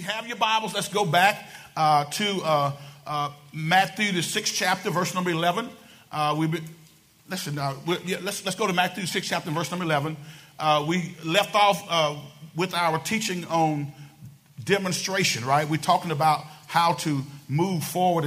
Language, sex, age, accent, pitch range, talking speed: English, male, 40-59, American, 145-180 Hz, 170 wpm